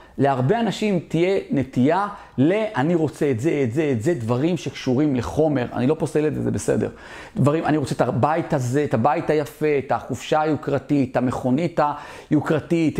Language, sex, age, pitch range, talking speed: Hebrew, male, 40-59, 125-160 Hz, 165 wpm